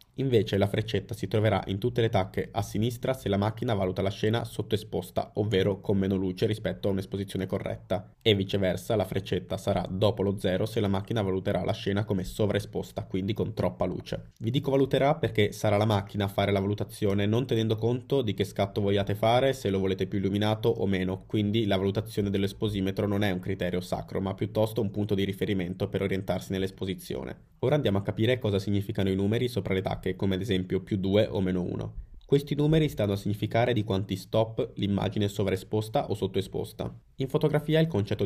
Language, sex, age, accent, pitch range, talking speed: Italian, male, 20-39, native, 95-110 Hz, 200 wpm